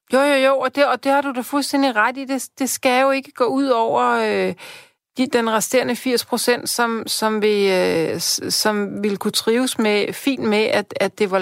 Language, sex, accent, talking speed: Danish, female, native, 220 wpm